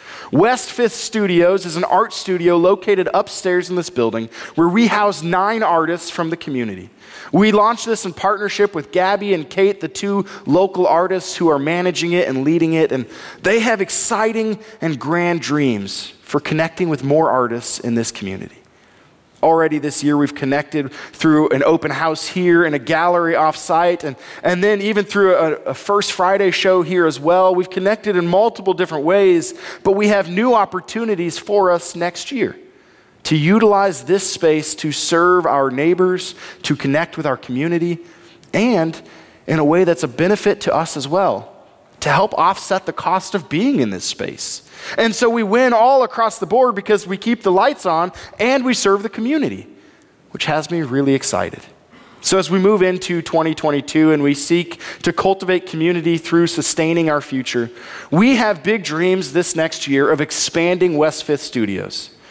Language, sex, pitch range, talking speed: English, male, 155-200 Hz, 175 wpm